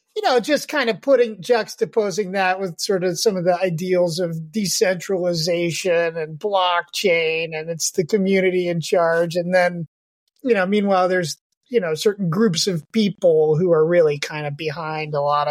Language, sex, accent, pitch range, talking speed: English, male, American, 165-220 Hz, 175 wpm